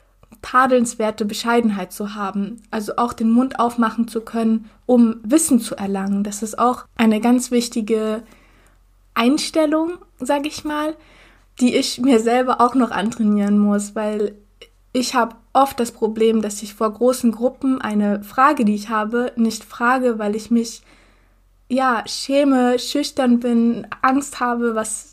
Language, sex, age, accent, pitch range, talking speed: German, female, 20-39, German, 215-245 Hz, 145 wpm